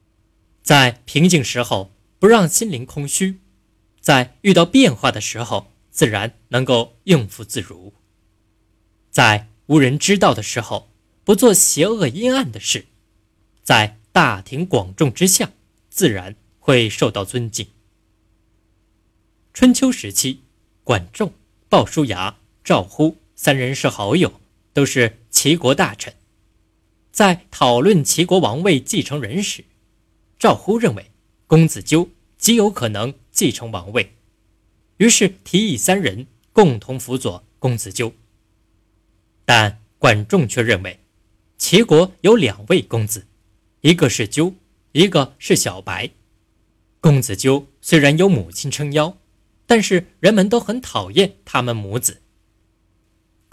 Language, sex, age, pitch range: Chinese, male, 20-39, 105-155 Hz